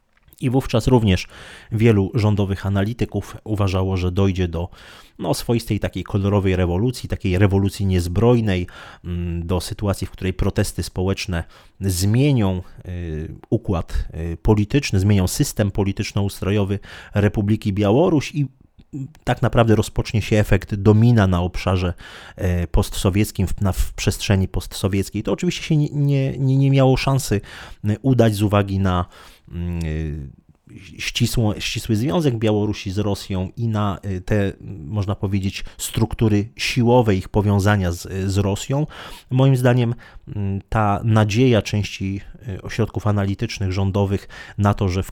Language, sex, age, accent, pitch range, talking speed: Polish, male, 30-49, native, 95-110 Hz, 115 wpm